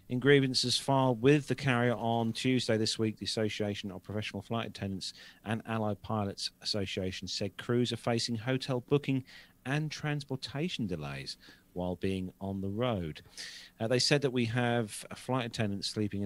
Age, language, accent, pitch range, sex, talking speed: 40-59, English, British, 95-120 Hz, male, 160 wpm